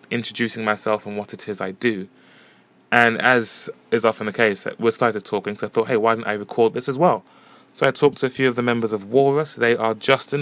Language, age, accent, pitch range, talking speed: English, 20-39, British, 105-125 Hz, 250 wpm